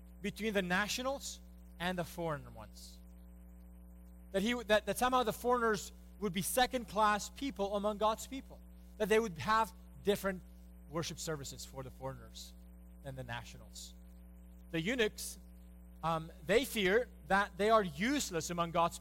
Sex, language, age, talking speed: male, English, 30-49, 140 wpm